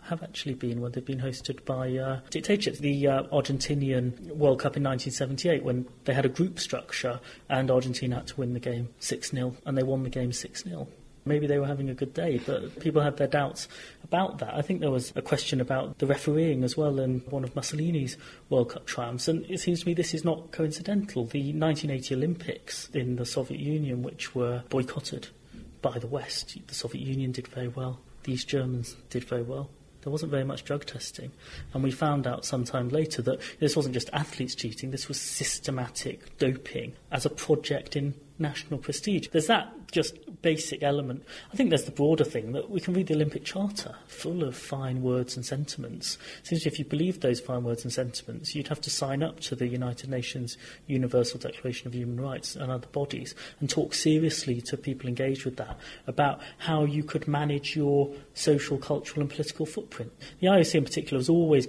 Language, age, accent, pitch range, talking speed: English, 30-49, British, 130-155 Hz, 200 wpm